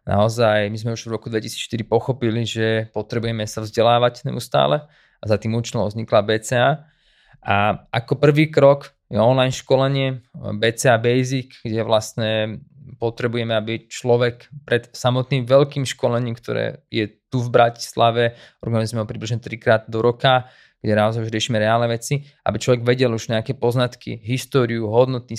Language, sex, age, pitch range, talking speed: Slovak, male, 20-39, 115-130 Hz, 145 wpm